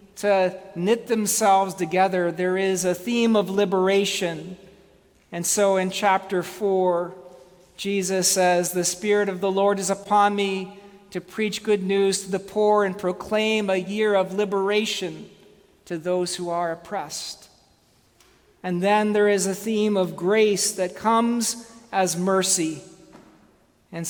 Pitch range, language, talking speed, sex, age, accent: 180-205 Hz, English, 140 wpm, male, 40-59, American